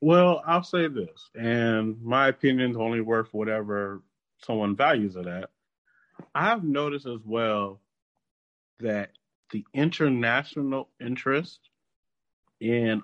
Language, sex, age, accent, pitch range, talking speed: English, male, 30-49, American, 105-145 Hz, 105 wpm